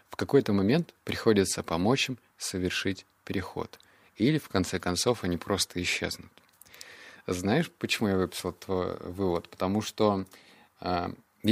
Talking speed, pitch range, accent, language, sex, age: 125 wpm, 95-115 Hz, native, Russian, male, 30-49